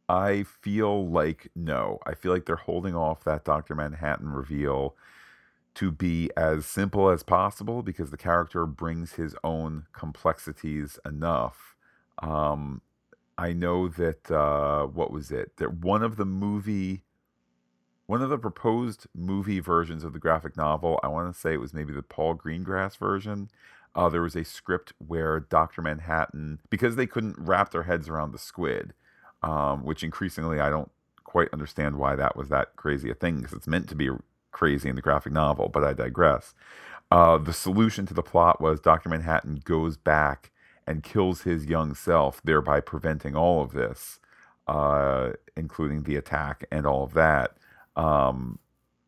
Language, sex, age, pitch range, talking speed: English, male, 40-59, 75-95 Hz, 165 wpm